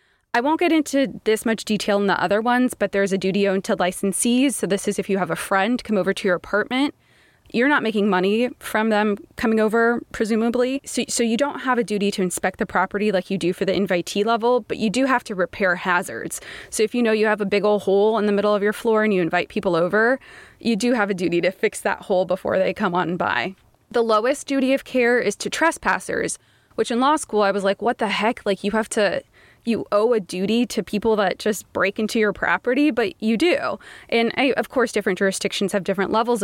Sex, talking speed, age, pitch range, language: female, 240 wpm, 20-39, 195-240 Hz, English